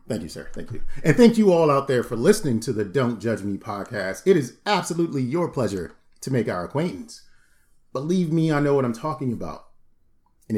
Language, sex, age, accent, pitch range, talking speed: English, male, 40-59, American, 105-155 Hz, 210 wpm